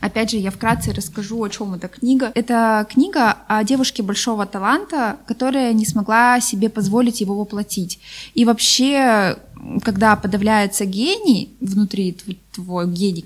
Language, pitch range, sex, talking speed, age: Russian, 195-230 Hz, female, 135 wpm, 20-39